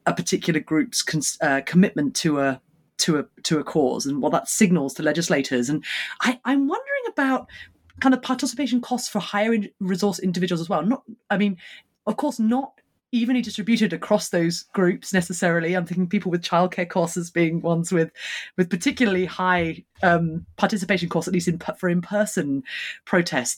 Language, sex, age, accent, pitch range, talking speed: English, female, 30-49, British, 175-225 Hz, 180 wpm